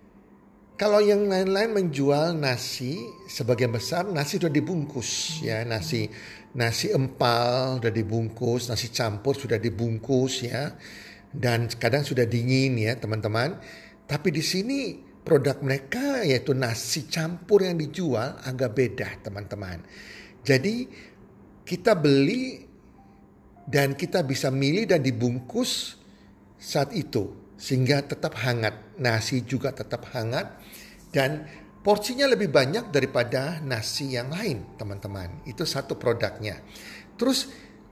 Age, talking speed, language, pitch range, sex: 50-69, 110 wpm, Indonesian, 115-170 Hz, male